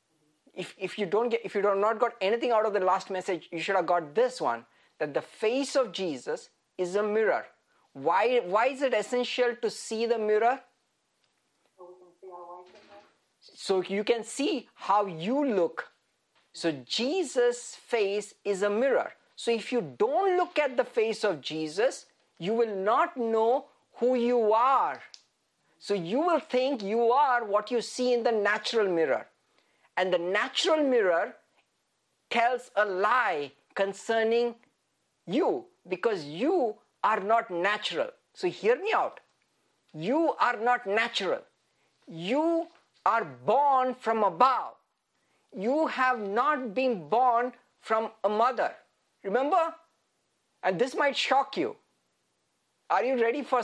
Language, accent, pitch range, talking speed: English, Indian, 205-270 Hz, 140 wpm